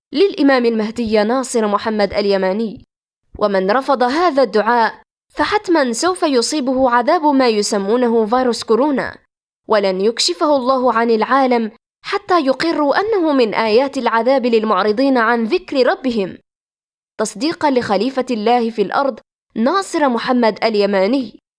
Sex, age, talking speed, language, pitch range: female, 20-39, 110 wpm, Arabic, 225-280 Hz